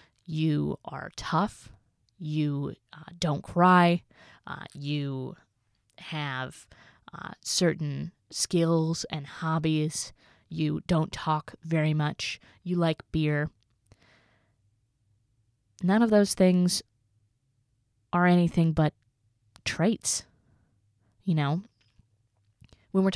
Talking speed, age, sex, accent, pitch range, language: 90 wpm, 20-39, female, American, 130-175 Hz, English